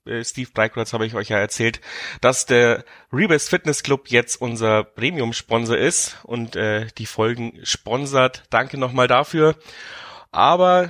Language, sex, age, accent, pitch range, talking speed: German, male, 30-49, German, 115-135 Hz, 140 wpm